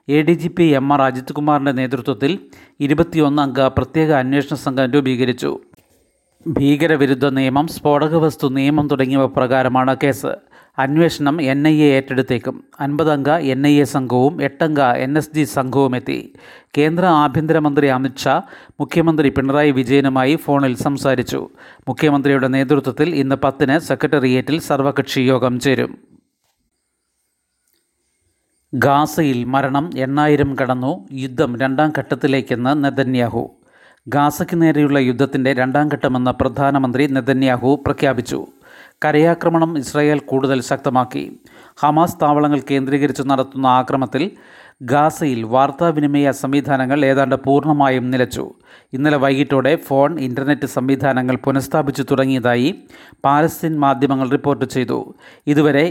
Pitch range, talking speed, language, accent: 135-150 Hz, 100 wpm, Malayalam, native